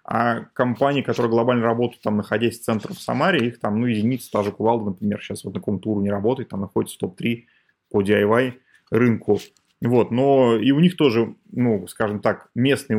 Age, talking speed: 20-39, 195 wpm